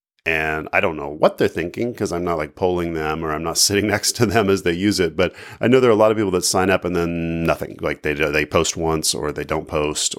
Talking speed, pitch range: 285 wpm, 85-105 Hz